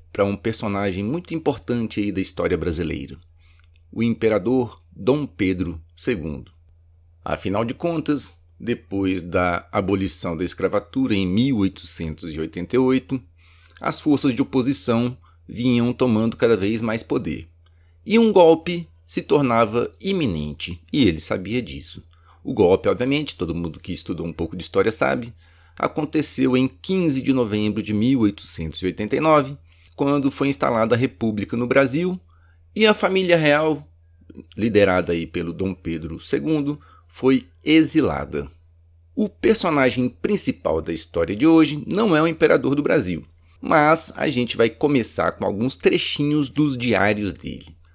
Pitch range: 85-140 Hz